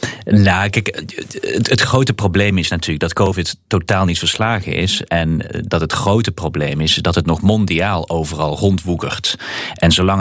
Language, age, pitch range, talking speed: Dutch, 40-59, 90-110 Hz, 155 wpm